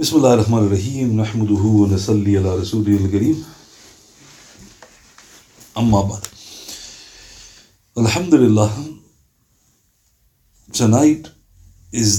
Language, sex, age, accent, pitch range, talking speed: English, male, 50-69, Indian, 105-125 Hz, 65 wpm